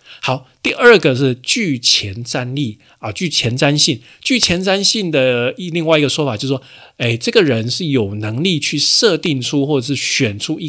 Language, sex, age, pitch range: Chinese, male, 20-39, 120-160 Hz